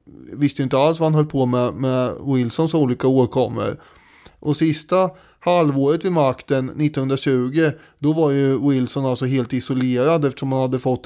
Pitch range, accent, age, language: 125-145 Hz, Swedish, 20-39, English